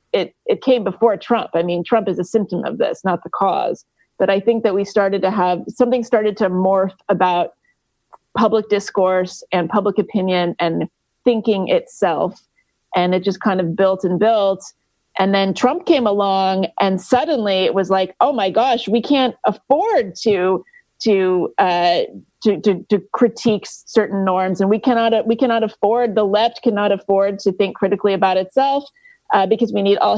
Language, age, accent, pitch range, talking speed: English, 30-49, American, 185-225 Hz, 180 wpm